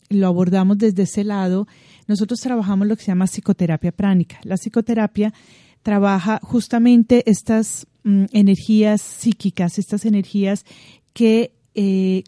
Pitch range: 180-215 Hz